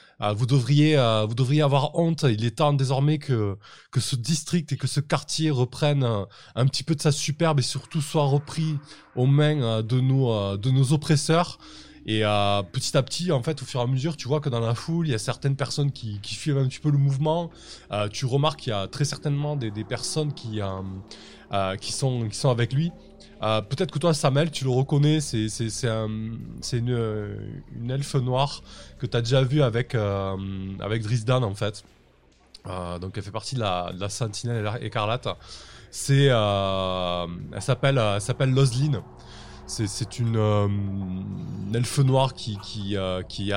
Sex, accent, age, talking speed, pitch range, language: male, French, 20-39, 205 wpm, 105-140 Hz, French